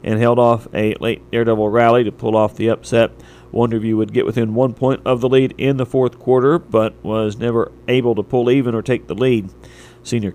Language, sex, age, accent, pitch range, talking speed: English, male, 40-59, American, 110-125 Hz, 215 wpm